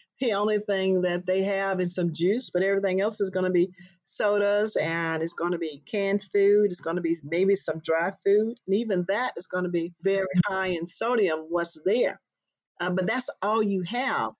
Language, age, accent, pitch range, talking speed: English, 50-69, American, 180-220 Hz, 215 wpm